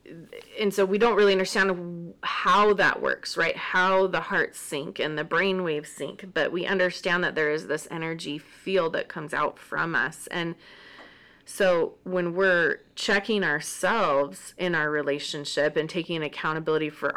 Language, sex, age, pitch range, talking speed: English, female, 30-49, 155-190 Hz, 160 wpm